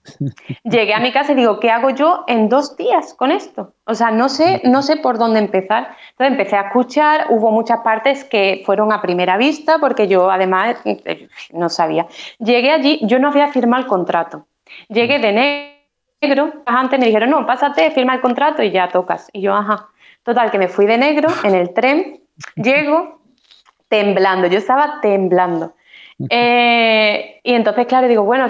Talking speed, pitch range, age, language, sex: 180 wpm, 195-260 Hz, 20-39, Spanish, female